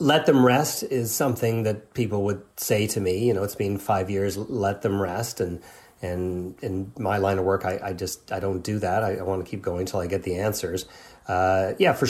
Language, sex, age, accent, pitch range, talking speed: English, male, 30-49, American, 95-115 Hz, 240 wpm